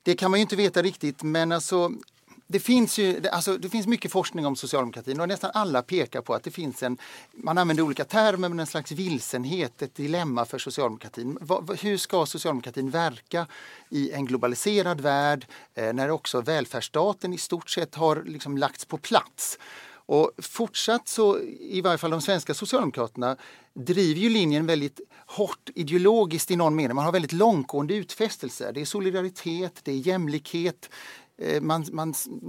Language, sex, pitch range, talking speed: English, male, 145-190 Hz, 165 wpm